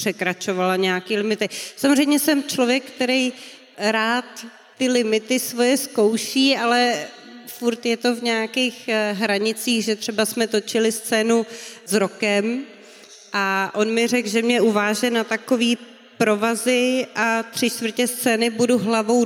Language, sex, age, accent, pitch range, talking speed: Czech, female, 30-49, native, 225-275 Hz, 130 wpm